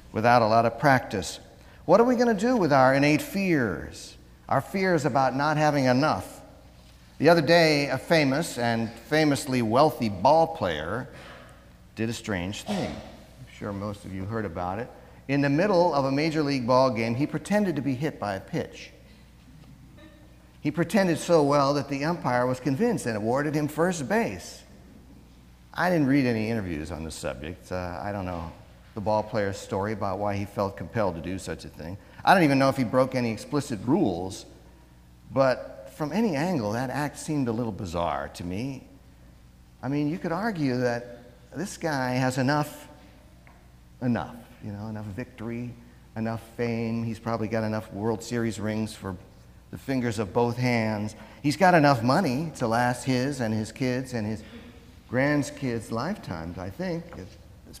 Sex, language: male, English